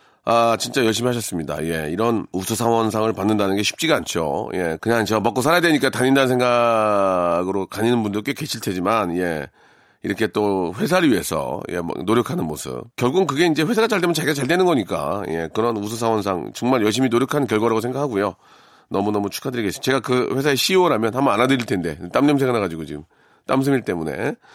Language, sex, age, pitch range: Korean, male, 40-59, 110-160 Hz